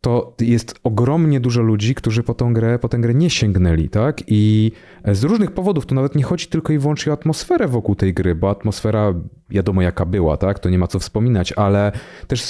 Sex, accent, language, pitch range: male, native, Polish, 95-120 Hz